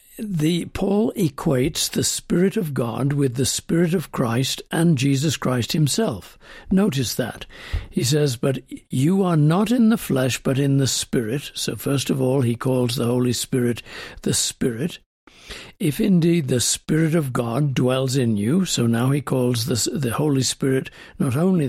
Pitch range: 130-170 Hz